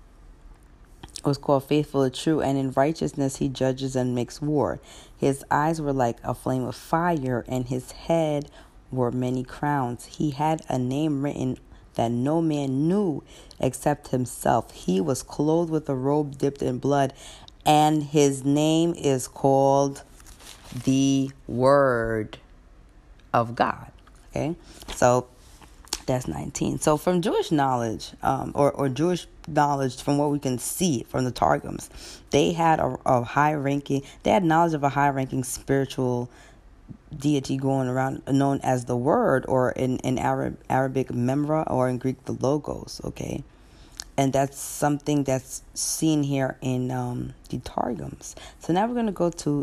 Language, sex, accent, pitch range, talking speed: English, female, American, 125-145 Hz, 150 wpm